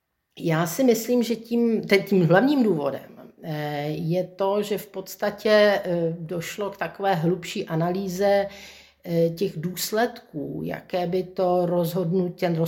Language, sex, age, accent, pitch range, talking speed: Czech, female, 50-69, native, 165-195 Hz, 115 wpm